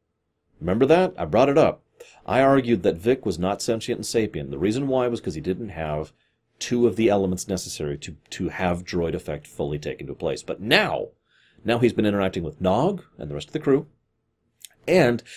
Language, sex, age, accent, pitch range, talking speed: English, male, 40-59, American, 90-115 Hz, 205 wpm